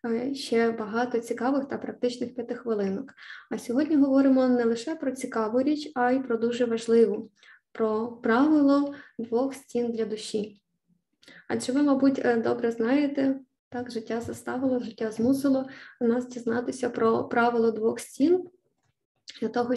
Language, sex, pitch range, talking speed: Ukrainian, female, 230-265 Hz, 135 wpm